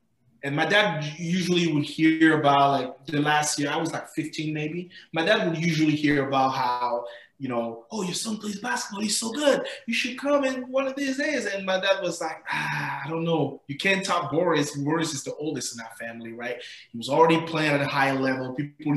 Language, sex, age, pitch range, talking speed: English, male, 20-39, 130-160 Hz, 225 wpm